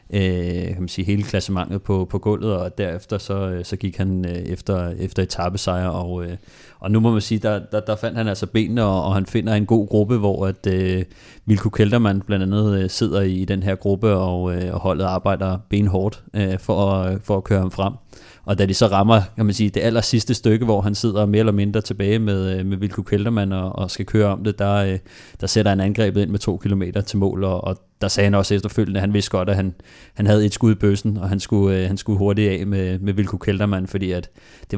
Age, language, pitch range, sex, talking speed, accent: 30-49, Danish, 95-105 Hz, male, 235 wpm, native